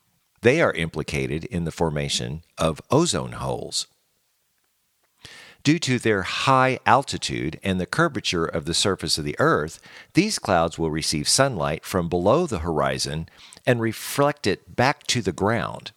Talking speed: 145 wpm